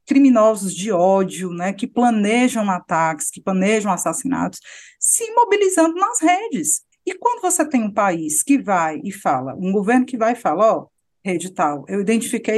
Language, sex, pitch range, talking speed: Portuguese, female, 190-275 Hz, 170 wpm